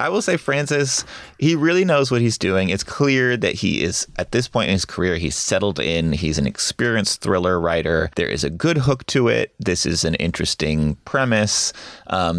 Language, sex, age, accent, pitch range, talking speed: English, male, 30-49, American, 80-105 Hz, 205 wpm